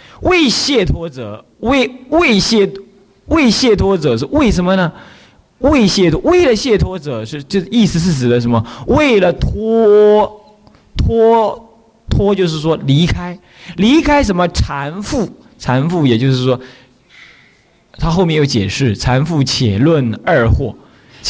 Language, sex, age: Chinese, male, 20-39